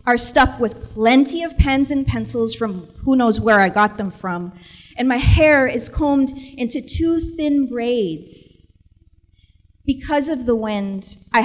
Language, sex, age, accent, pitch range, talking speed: English, female, 30-49, American, 175-270 Hz, 155 wpm